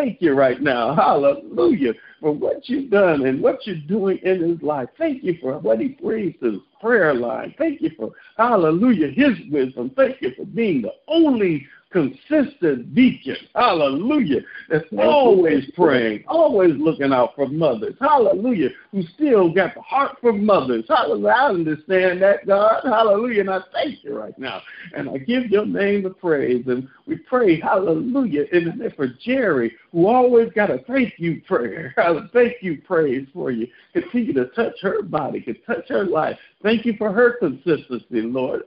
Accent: American